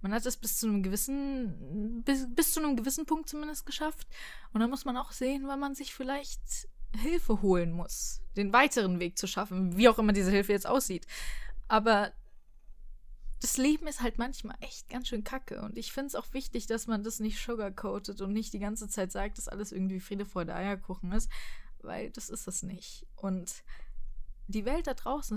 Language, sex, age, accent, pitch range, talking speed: German, female, 20-39, German, 195-250 Hz, 200 wpm